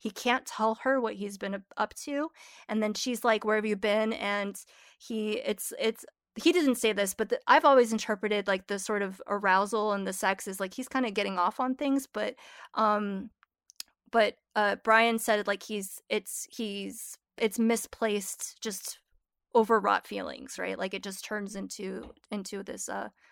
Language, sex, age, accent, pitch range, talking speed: English, female, 20-39, American, 200-235 Hz, 185 wpm